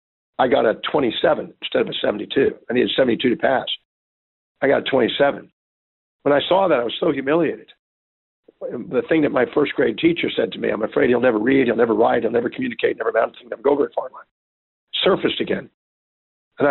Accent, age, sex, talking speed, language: American, 50-69, male, 200 wpm, English